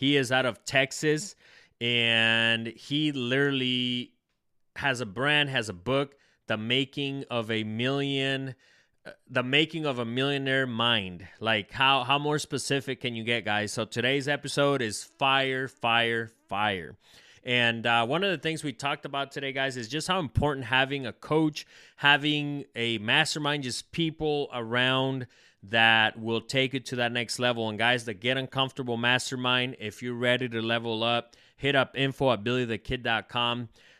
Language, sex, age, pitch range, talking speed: English, male, 20-39, 115-135 Hz, 160 wpm